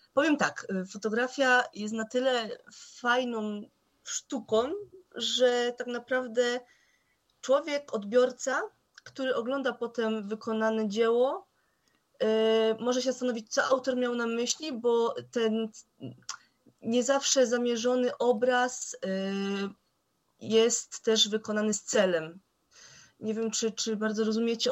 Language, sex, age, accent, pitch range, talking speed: Polish, female, 20-39, native, 210-250 Hz, 105 wpm